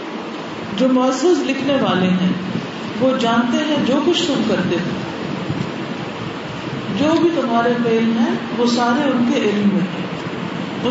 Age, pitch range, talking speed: 50-69, 195-250 Hz, 130 wpm